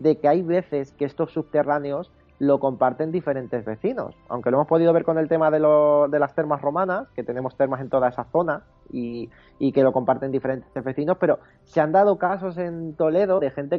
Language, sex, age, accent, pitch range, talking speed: Spanish, male, 30-49, Spanish, 135-170 Hz, 210 wpm